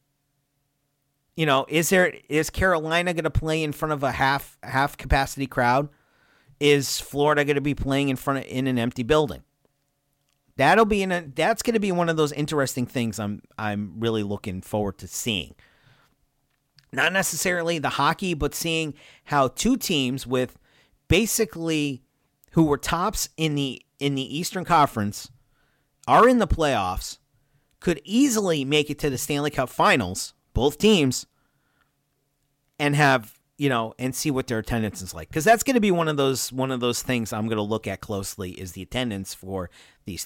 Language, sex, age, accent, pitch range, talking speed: English, male, 40-59, American, 125-150 Hz, 175 wpm